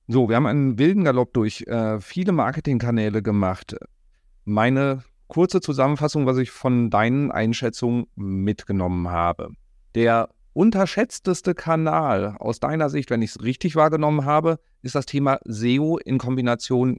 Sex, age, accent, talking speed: male, 40-59, German, 140 wpm